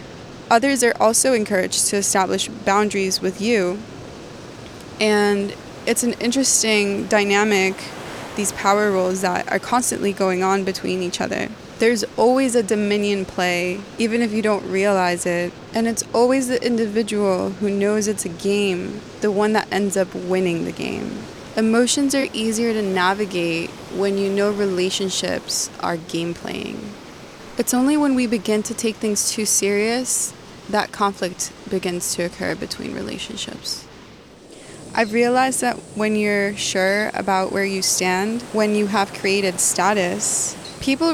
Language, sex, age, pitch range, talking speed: English, female, 20-39, 190-230 Hz, 145 wpm